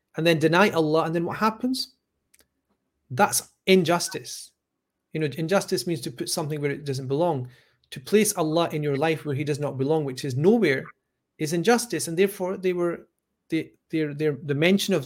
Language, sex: English, male